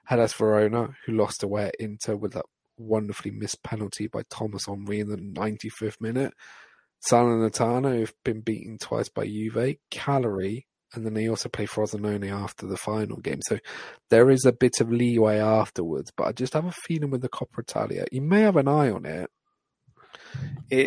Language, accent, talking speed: English, British, 185 wpm